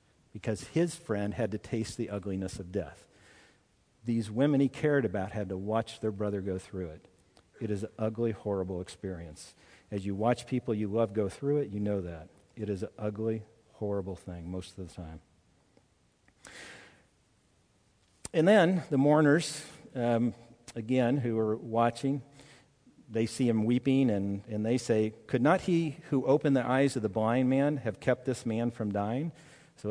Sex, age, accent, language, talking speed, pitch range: male, 50-69, American, English, 175 wpm, 105-155 Hz